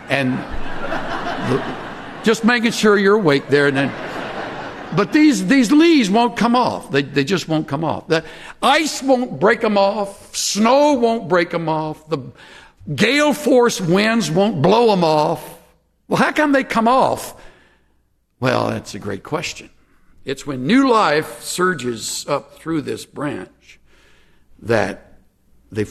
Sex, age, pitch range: male, 60-79, 145-235 Hz